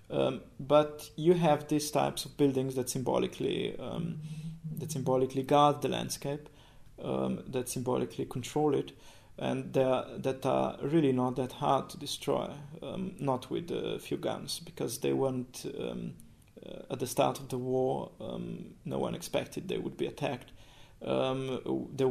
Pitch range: 130-155 Hz